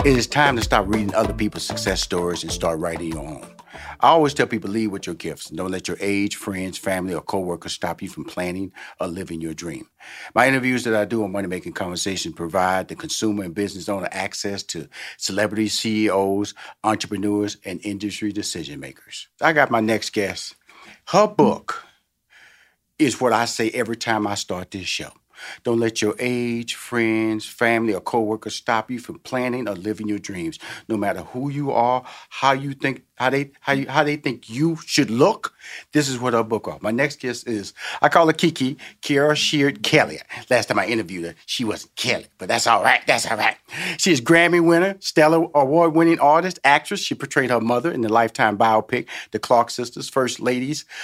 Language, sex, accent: English, male, American